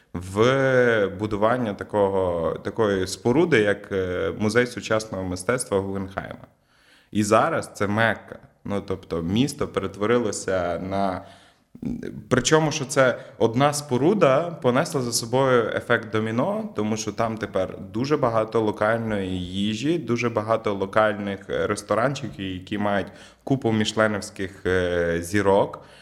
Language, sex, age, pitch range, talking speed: Ukrainian, male, 20-39, 95-115 Hz, 105 wpm